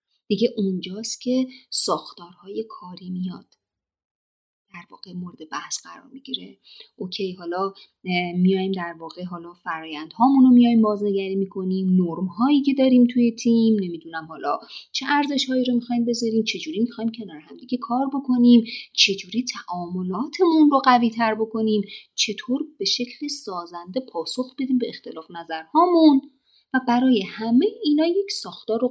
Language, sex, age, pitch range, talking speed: Persian, female, 30-49, 185-265 Hz, 135 wpm